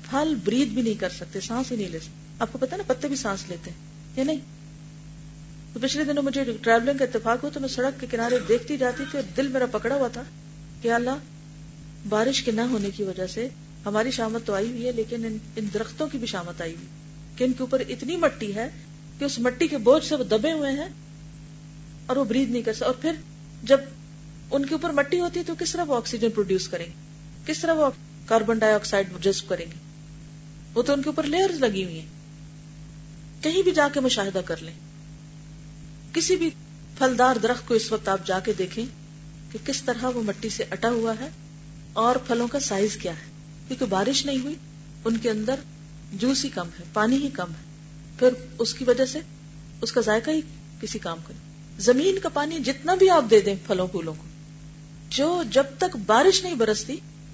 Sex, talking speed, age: female, 210 wpm, 40-59